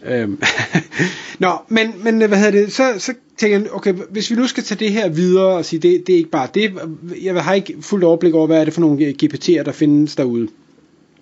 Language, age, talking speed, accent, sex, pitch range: Danish, 30-49, 230 wpm, native, male, 155-205 Hz